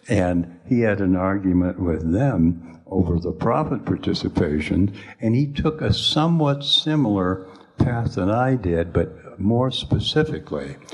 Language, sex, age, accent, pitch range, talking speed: English, male, 60-79, American, 85-115 Hz, 130 wpm